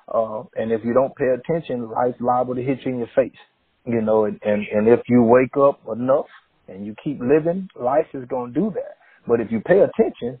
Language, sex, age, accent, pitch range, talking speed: English, male, 30-49, American, 115-135 Hz, 230 wpm